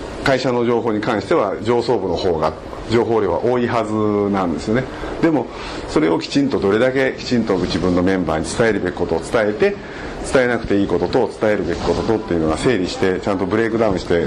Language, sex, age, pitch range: Japanese, male, 50-69, 90-135 Hz